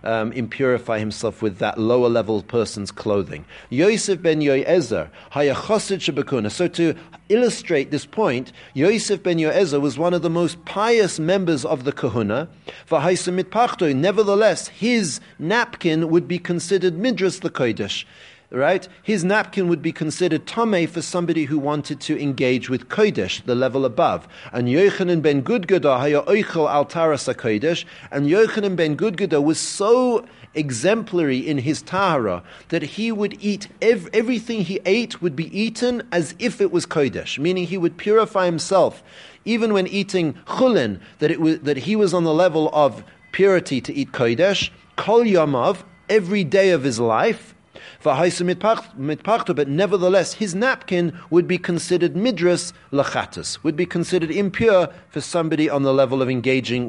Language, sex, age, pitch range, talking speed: English, male, 40-59, 140-195 Hz, 145 wpm